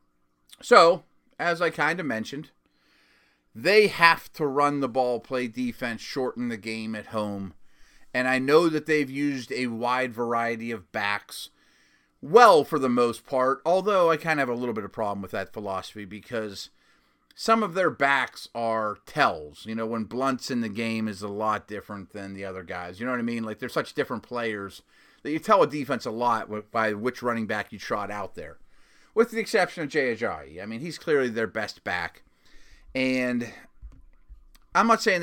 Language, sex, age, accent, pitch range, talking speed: English, male, 30-49, American, 105-135 Hz, 190 wpm